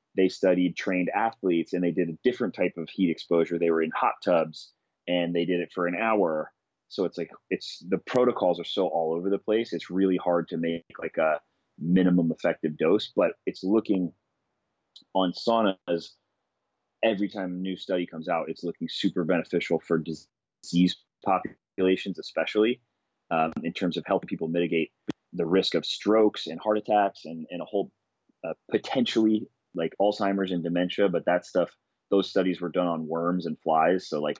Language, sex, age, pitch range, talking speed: English, male, 30-49, 85-95 Hz, 180 wpm